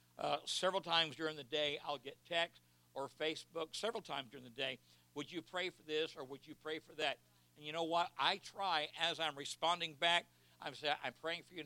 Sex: male